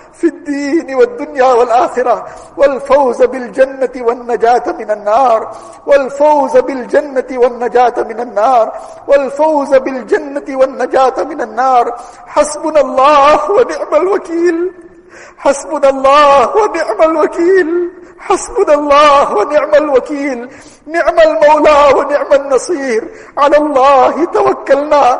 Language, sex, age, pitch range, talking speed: English, male, 50-69, 275-365 Hz, 90 wpm